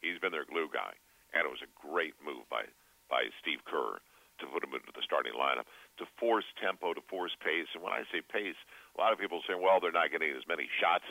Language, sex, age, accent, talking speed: English, male, 50-69, American, 245 wpm